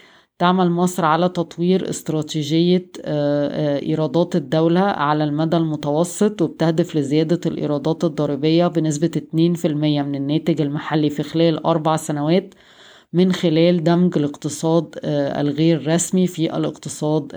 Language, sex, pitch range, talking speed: Arabic, female, 150-175 Hz, 105 wpm